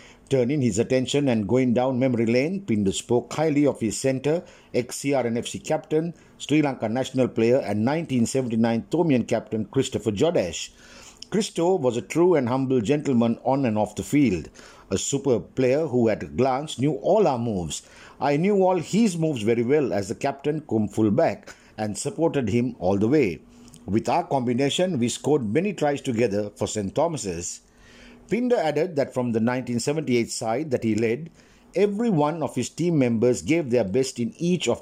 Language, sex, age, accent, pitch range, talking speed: English, male, 50-69, Indian, 115-150 Hz, 175 wpm